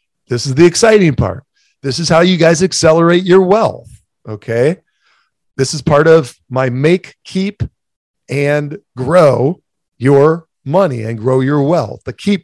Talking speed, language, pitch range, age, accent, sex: 150 wpm, English, 115-155 Hz, 40-59, American, male